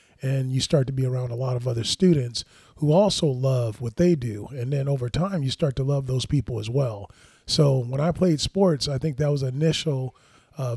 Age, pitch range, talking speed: 30-49, 125-155 Hz, 230 wpm